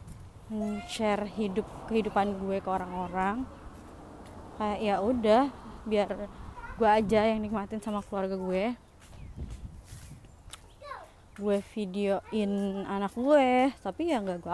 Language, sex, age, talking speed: Indonesian, female, 20-39, 105 wpm